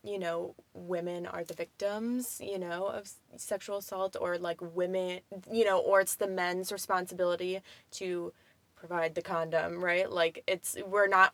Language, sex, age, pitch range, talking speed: English, female, 20-39, 180-210 Hz, 160 wpm